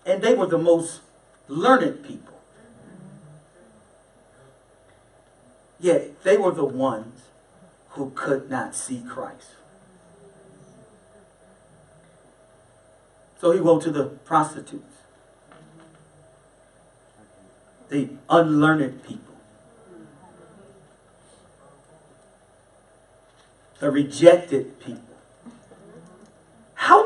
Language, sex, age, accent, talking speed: English, male, 50-69, American, 65 wpm